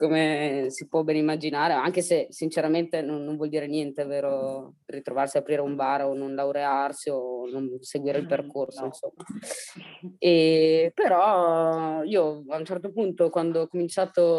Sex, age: female, 20-39